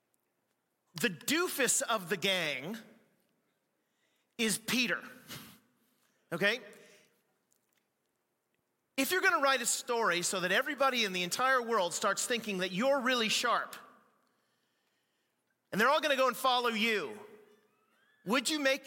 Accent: American